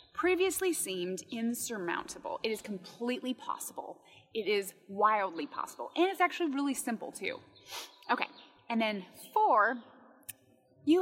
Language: English